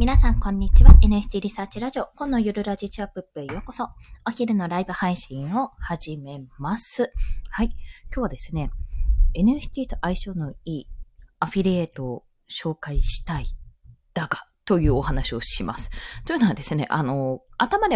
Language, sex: Japanese, female